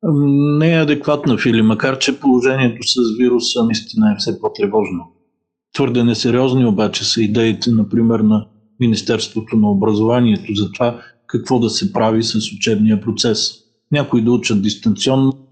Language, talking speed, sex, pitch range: Bulgarian, 140 wpm, male, 110-130 Hz